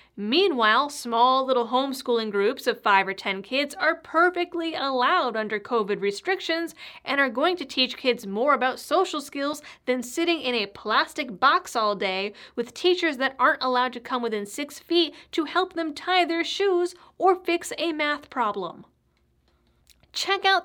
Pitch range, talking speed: 230-335 Hz, 165 wpm